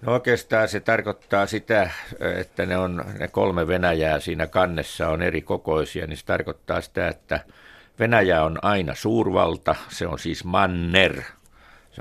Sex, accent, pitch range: male, native, 80-100 Hz